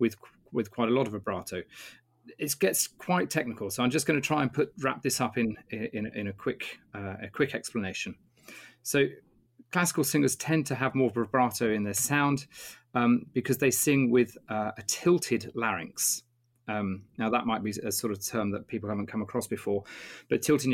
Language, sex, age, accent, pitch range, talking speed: English, male, 30-49, British, 110-135 Hz, 195 wpm